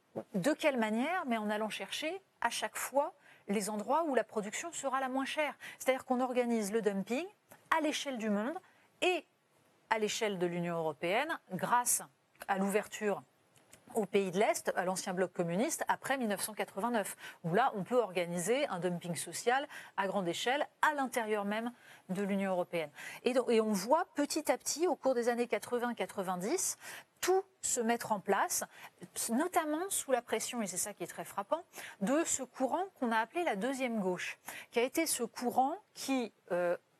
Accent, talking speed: French, 175 wpm